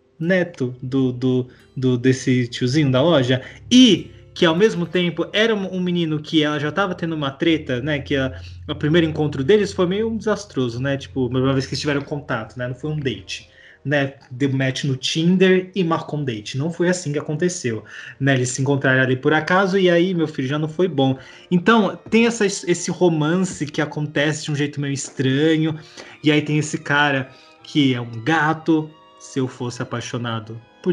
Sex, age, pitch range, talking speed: male, 20-39, 135-170 Hz, 200 wpm